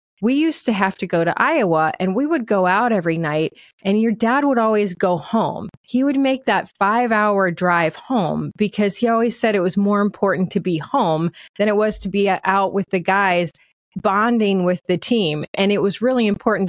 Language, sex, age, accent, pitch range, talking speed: English, female, 30-49, American, 175-215 Hz, 210 wpm